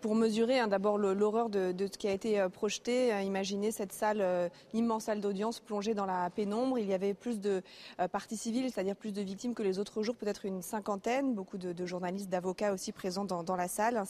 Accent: French